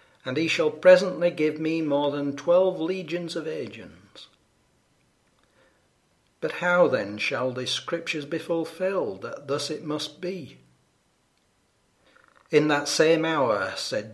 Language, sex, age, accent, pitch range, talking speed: English, male, 60-79, British, 120-165 Hz, 125 wpm